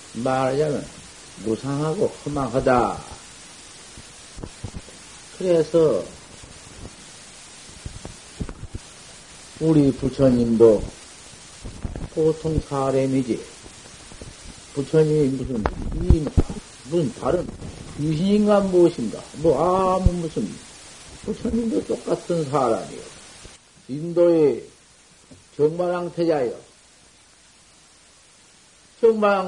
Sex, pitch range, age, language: male, 130-180 Hz, 50-69, Korean